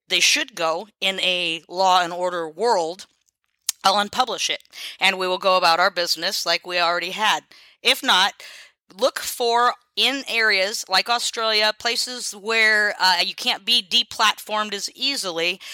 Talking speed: 155 wpm